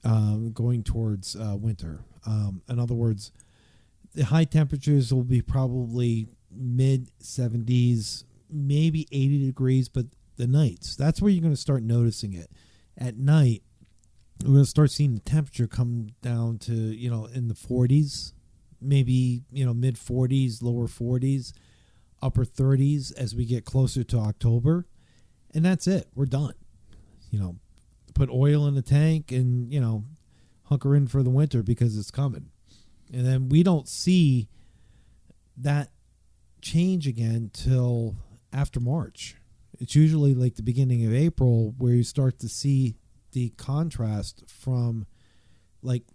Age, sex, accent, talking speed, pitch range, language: 50-69, male, American, 145 wpm, 110-140 Hz, English